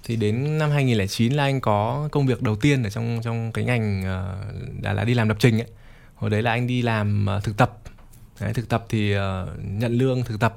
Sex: male